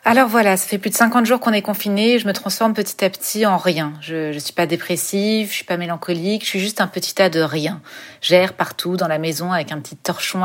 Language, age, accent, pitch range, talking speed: French, 40-59, French, 175-215 Hz, 265 wpm